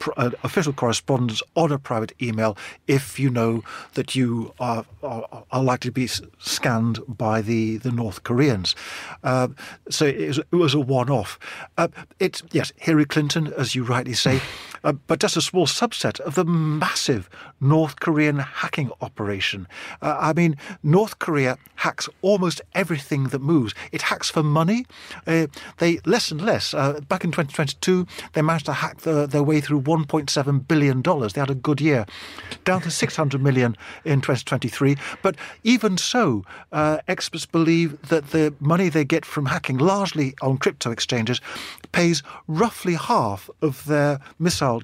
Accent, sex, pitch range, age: British, male, 130-165 Hz, 50-69